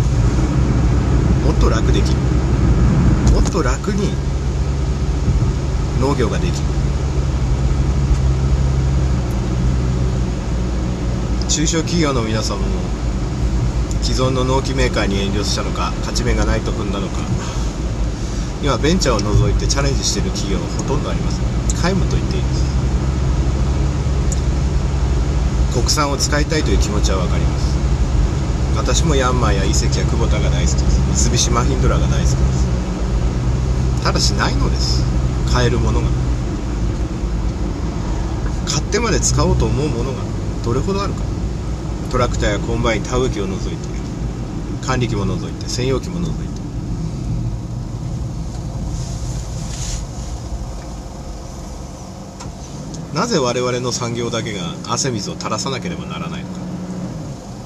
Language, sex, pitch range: Japanese, male, 65-70 Hz